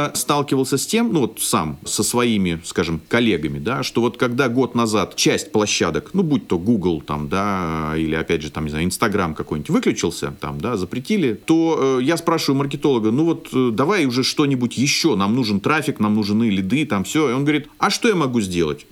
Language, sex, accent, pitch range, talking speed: Russian, male, native, 105-155 Hz, 205 wpm